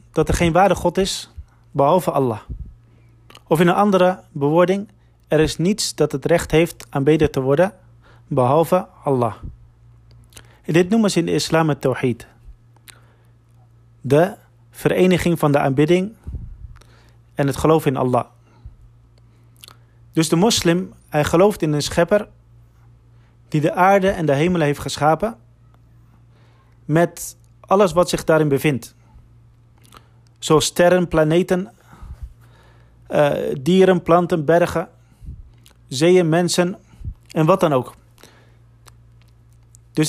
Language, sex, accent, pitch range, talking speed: Dutch, male, Dutch, 115-170 Hz, 120 wpm